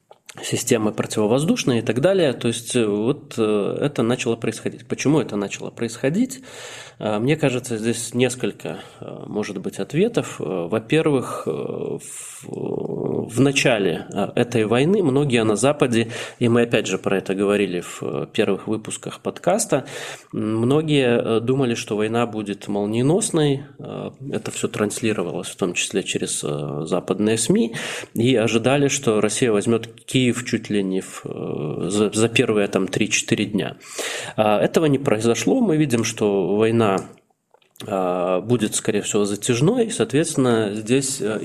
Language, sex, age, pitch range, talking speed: Russian, male, 20-39, 105-130 Hz, 125 wpm